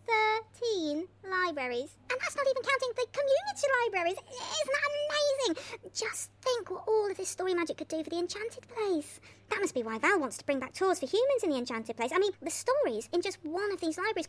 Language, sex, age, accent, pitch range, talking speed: English, male, 30-49, British, 265-400 Hz, 225 wpm